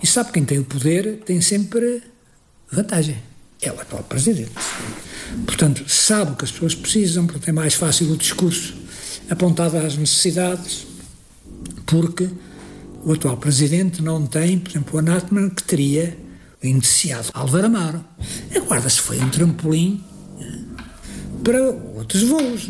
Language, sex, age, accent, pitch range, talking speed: Portuguese, male, 60-79, Portuguese, 155-220 Hz, 135 wpm